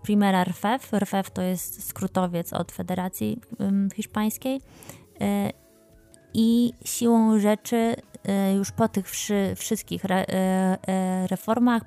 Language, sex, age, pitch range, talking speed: Polish, female, 20-39, 185-210 Hz, 115 wpm